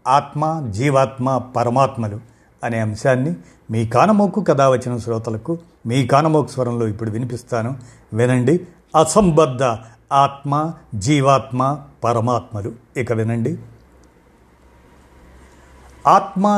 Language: Telugu